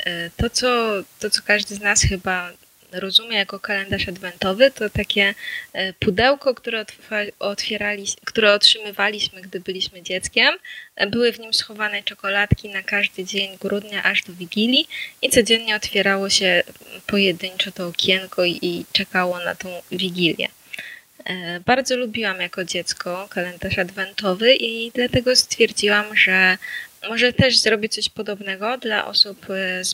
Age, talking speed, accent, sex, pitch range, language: 20-39, 130 wpm, native, female, 185-220 Hz, Polish